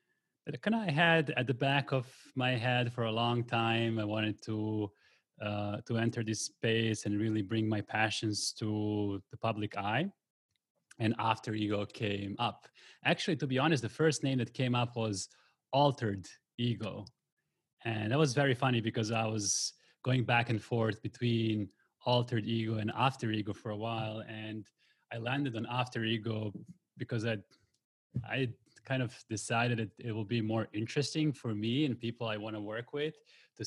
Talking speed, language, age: 175 wpm, English, 20-39